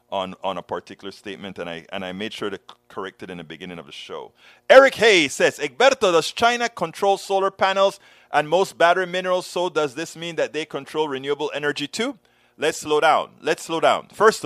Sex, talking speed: male, 205 wpm